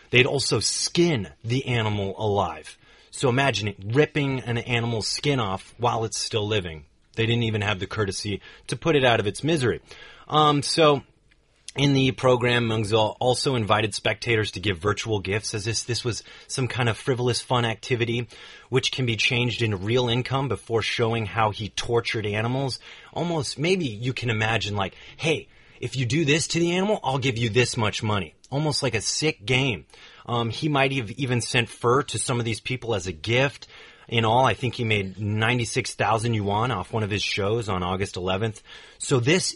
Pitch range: 105-130 Hz